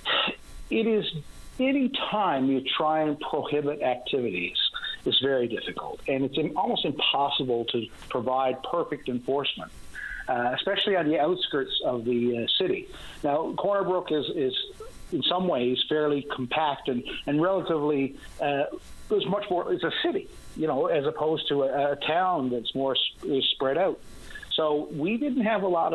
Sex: male